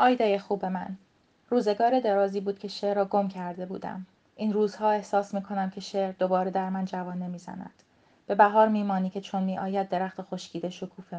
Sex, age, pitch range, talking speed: female, 30-49, 180-200 Hz, 180 wpm